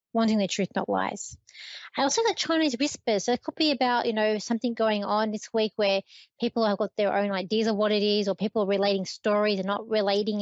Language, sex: English, female